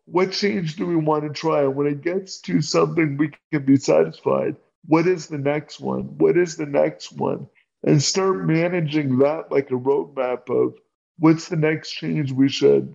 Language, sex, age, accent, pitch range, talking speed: English, male, 50-69, American, 135-165 Hz, 185 wpm